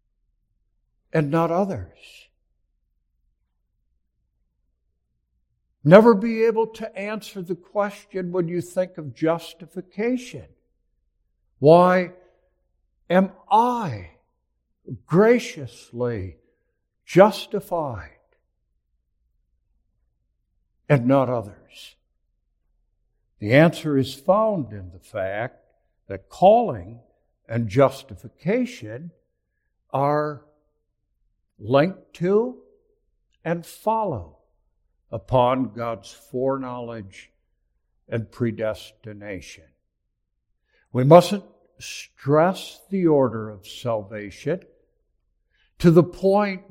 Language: English